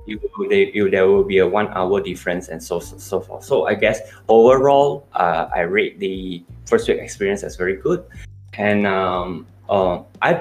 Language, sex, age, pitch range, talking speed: English, male, 20-39, 95-120 Hz, 175 wpm